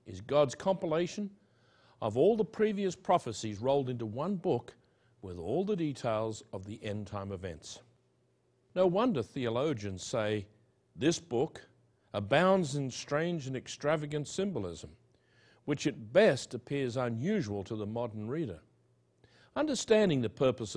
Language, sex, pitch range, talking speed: English, male, 105-150 Hz, 130 wpm